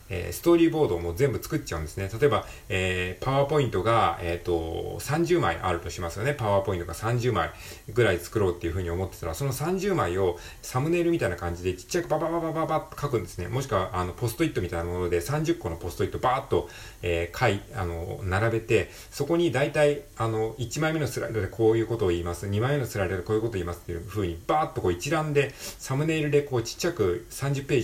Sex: male